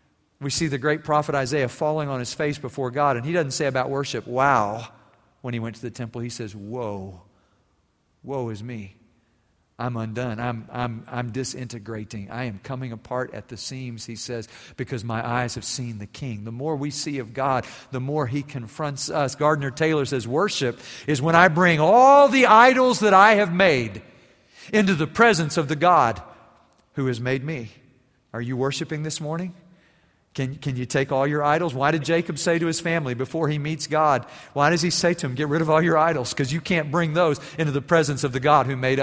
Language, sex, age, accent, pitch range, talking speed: English, male, 50-69, American, 130-175 Hz, 210 wpm